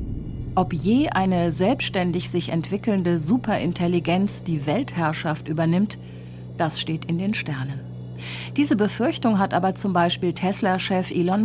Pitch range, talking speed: 155-210 Hz, 120 wpm